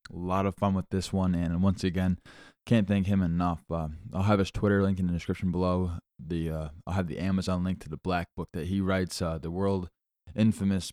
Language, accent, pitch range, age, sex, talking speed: English, American, 90-100 Hz, 20-39, male, 230 wpm